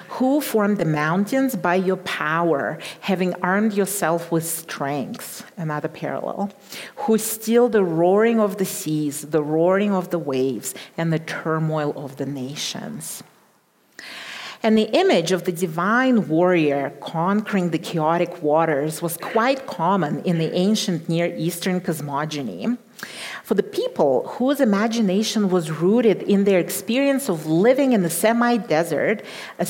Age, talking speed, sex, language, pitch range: 40-59, 140 wpm, female, English, 165-225 Hz